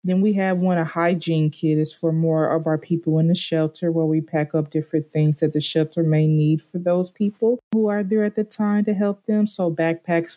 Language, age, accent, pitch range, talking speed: English, 20-39, American, 160-175 Hz, 235 wpm